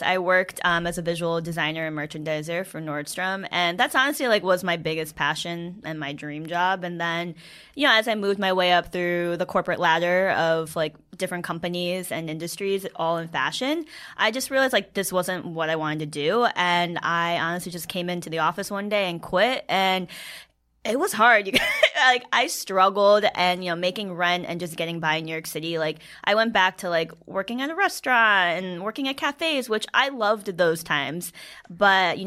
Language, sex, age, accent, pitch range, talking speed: English, female, 10-29, American, 165-200 Hz, 205 wpm